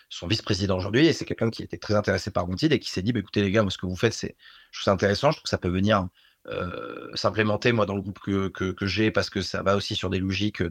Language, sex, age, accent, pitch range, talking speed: French, male, 30-49, French, 95-110 Hz, 305 wpm